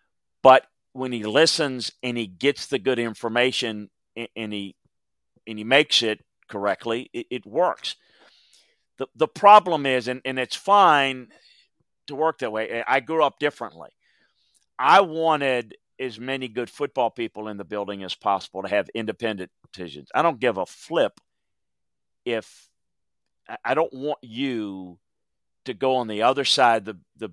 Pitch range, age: 110-145 Hz, 40-59